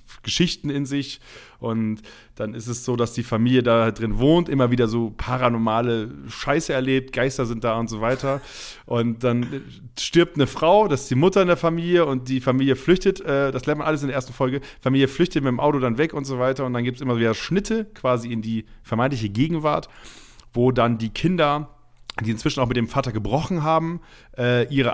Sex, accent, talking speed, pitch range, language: male, German, 210 wpm, 115-140 Hz, German